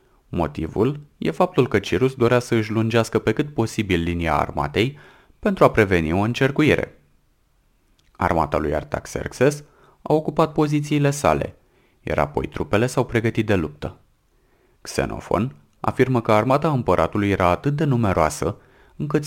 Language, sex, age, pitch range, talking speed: Romanian, male, 30-49, 90-140 Hz, 135 wpm